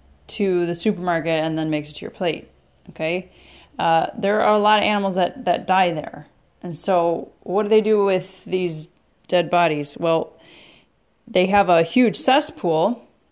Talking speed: 170 wpm